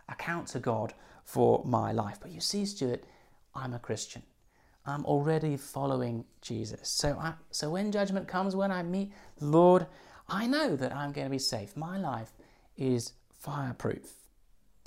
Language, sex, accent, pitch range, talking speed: English, male, British, 125-185 Hz, 160 wpm